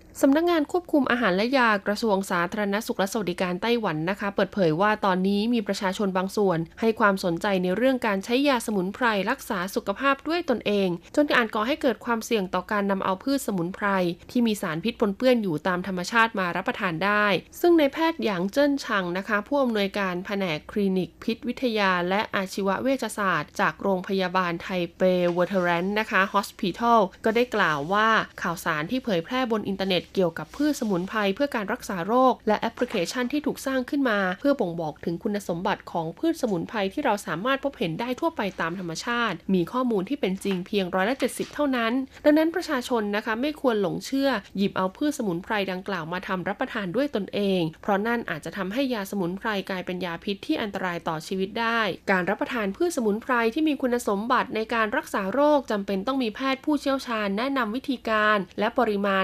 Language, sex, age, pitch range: Thai, female, 20-39, 190-250 Hz